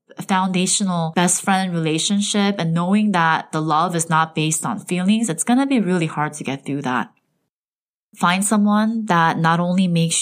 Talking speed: 175 wpm